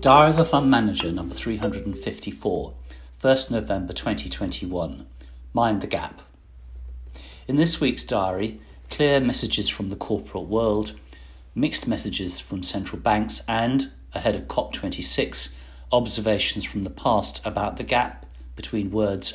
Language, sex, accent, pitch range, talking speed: English, male, British, 65-110 Hz, 125 wpm